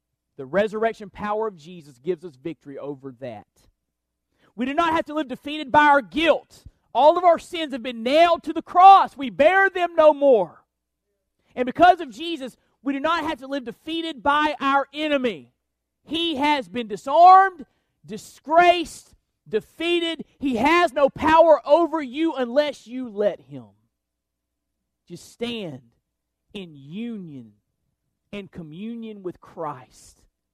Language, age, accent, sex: English, 40-59, American, male